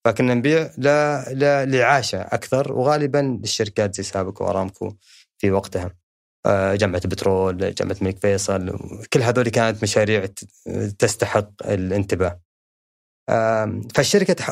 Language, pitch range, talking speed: Arabic, 100-130 Hz, 95 wpm